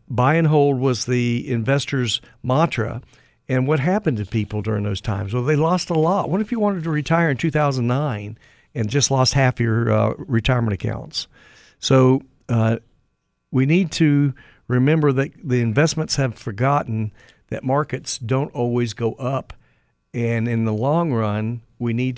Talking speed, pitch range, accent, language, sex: 160 wpm, 115-145 Hz, American, English, male